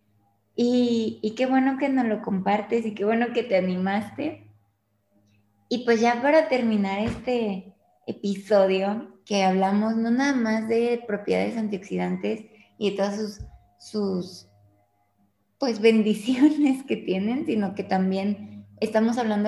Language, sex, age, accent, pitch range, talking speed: Spanish, female, 20-39, Mexican, 185-230 Hz, 130 wpm